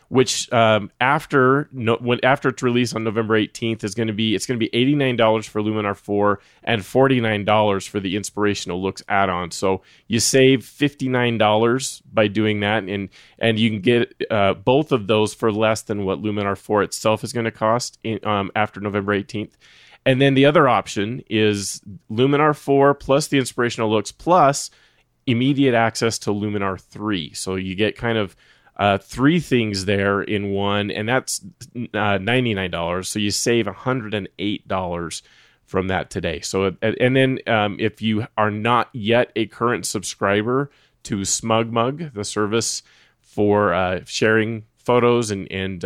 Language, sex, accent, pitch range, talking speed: English, male, American, 100-120 Hz, 170 wpm